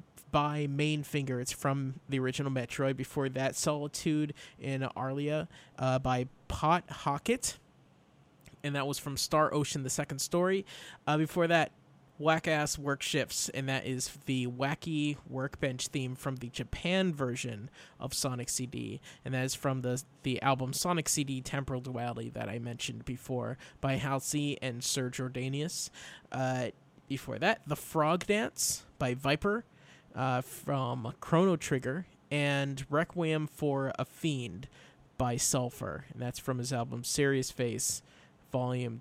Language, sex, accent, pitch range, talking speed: English, male, American, 130-155 Hz, 145 wpm